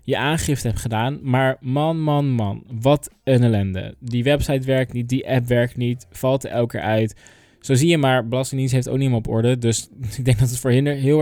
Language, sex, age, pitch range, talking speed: Dutch, male, 20-39, 115-135 Hz, 225 wpm